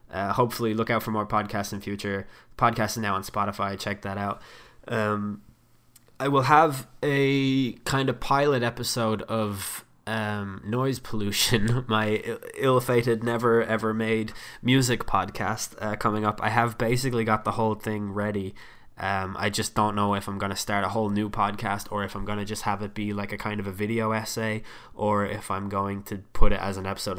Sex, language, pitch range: male, English, 100-115 Hz